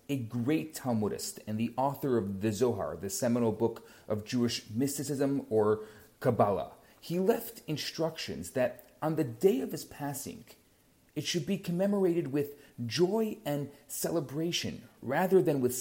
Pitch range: 120-165 Hz